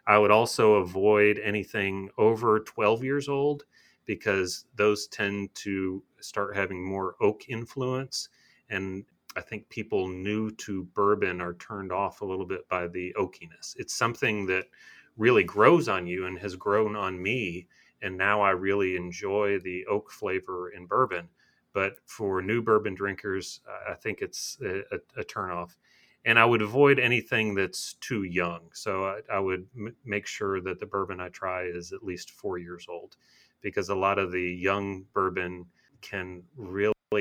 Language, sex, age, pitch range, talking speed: English, male, 30-49, 90-105 Hz, 165 wpm